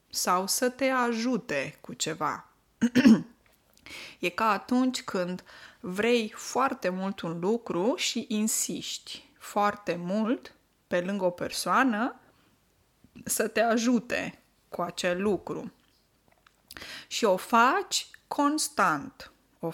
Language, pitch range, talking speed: Romanian, 180-240 Hz, 105 wpm